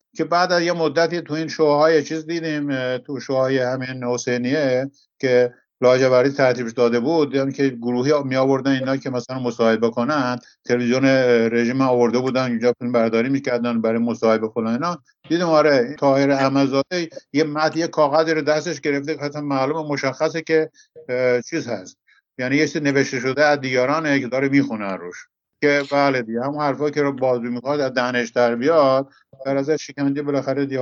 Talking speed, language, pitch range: 170 wpm, English, 125-155 Hz